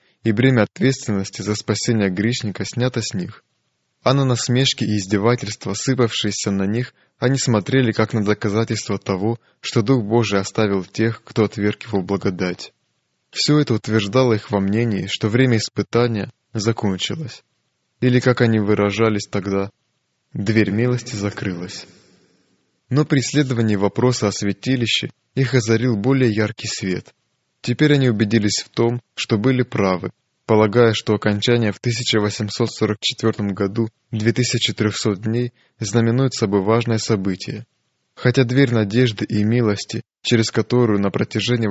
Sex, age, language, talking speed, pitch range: male, 20-39, Russian, 130 wpm, 105-120 Hz